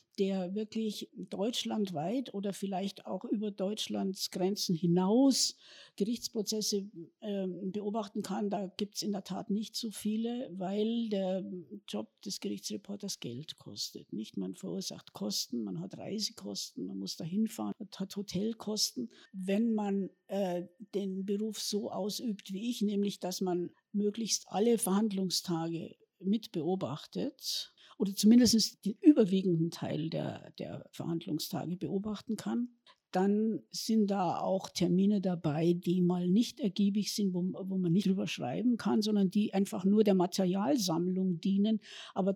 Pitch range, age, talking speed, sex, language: 180-215 Hz, 60-79, 135 wpm, female, German